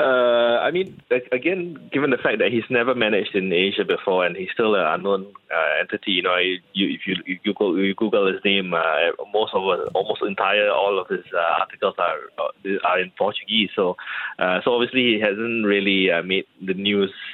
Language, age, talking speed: English, 20-39, 205 wpm